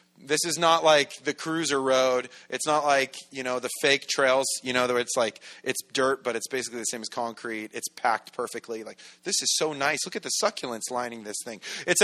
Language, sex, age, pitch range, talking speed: English, male, 30-49, 125-185 Hz, 220 wpm